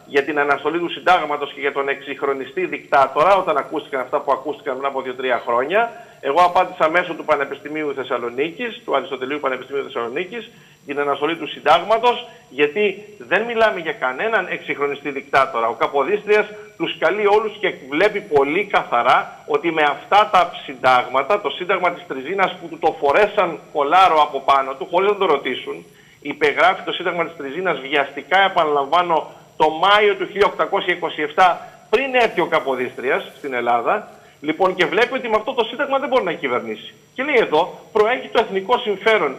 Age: 50-69